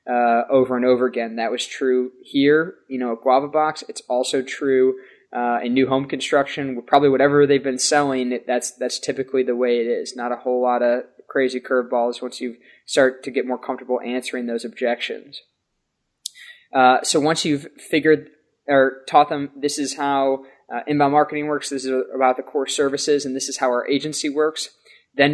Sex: male